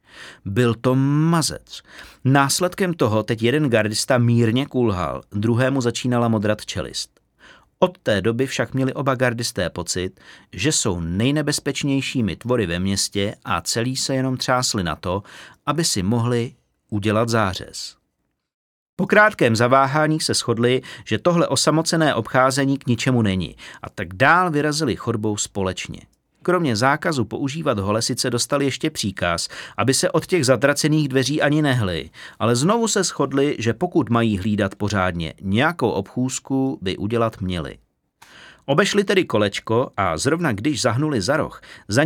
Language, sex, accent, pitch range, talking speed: Czech, male, native, 105-145 Hz, 140 wpm